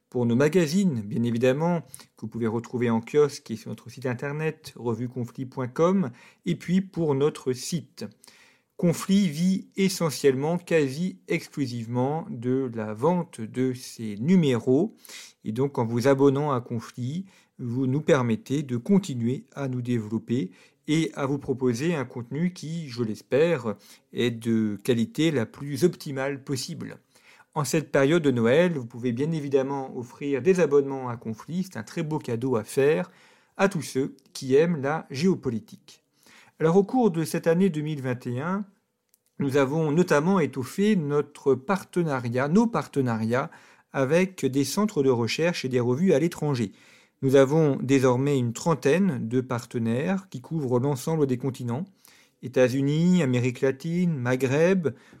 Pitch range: 125-170 Hz